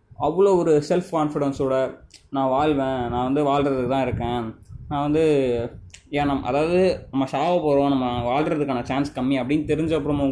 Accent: native